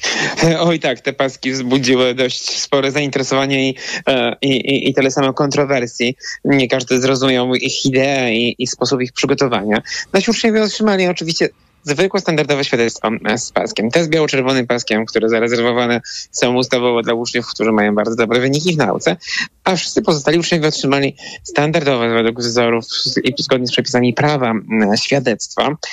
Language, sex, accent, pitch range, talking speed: Polish, male, native, 125-150 Hz, 150 wpm